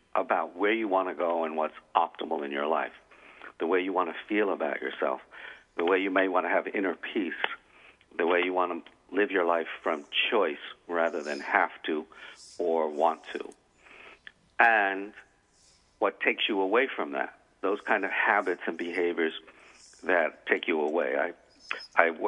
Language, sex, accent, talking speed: English, male, American, 170 wpm